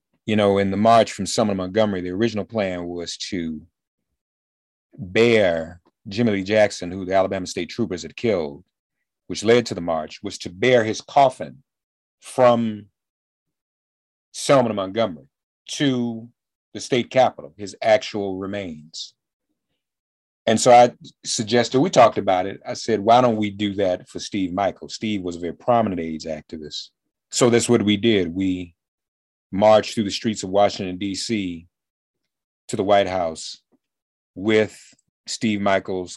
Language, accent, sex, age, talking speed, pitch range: English, American, male, 40-59, 150 wpm, 90-110 Hz